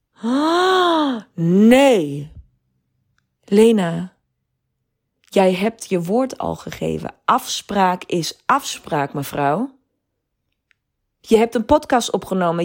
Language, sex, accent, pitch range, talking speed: Dutch, female, Dutch, 175-250 Hz, 85 wpm